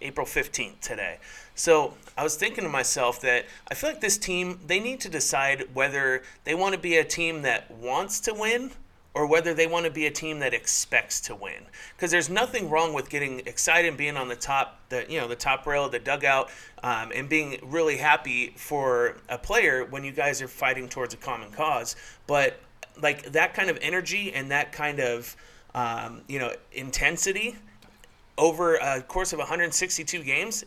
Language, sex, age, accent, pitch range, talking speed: English, male, 30-49, American, 135-180 Hz, 190 wpm